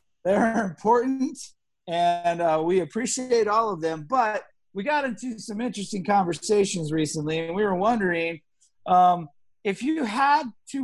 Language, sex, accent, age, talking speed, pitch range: English, male, American, 50-69, 145 wpm, 170-240 Hz